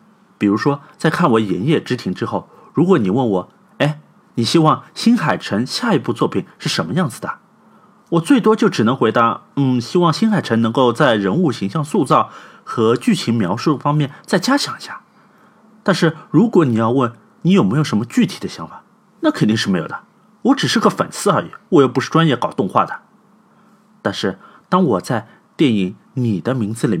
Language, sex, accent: Chinese, male, native